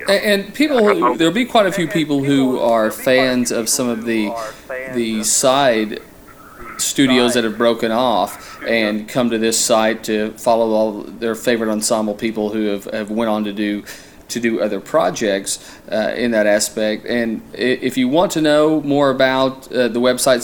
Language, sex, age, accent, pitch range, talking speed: English, male, 40-59, American, 105-125 Hz, 175 wpm